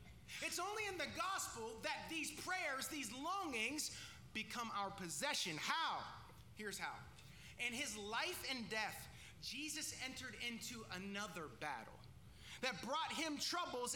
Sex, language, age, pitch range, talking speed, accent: male, English, 30-49, 280-365 Hz, 130 wpm, American